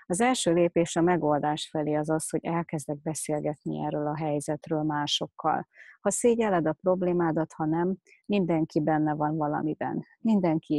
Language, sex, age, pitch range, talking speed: Hungarian, female, 30-49, 155-180 Hz, 145 wpm